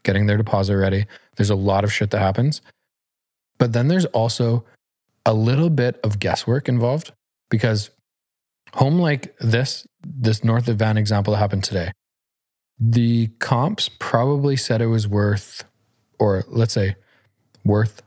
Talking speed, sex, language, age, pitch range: 145 wpm, male, English, 20-39, 105-125 Hz